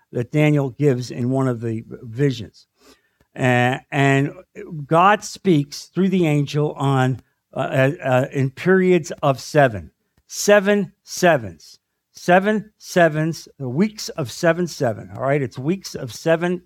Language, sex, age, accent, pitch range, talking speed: English, male, 50-69, American, 125-160 Hz, 130 wpm